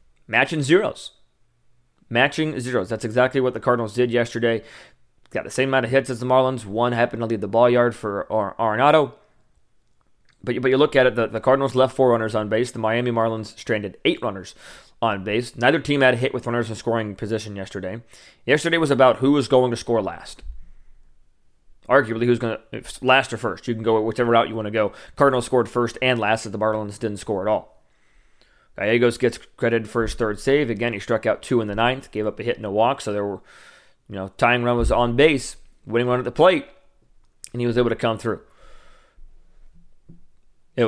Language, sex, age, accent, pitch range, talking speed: English, male, 20-39, American, 110-130 Hz, 210 wpm